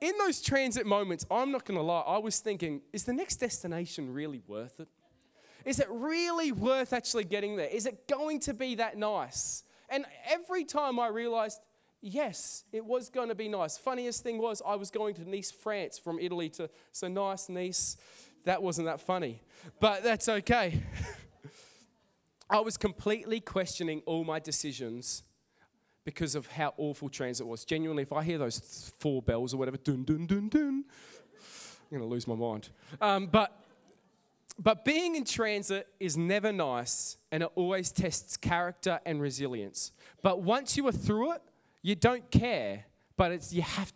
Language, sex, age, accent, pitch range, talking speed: English, male, 20-39, Australian, 155-225 Hz, 175 wpm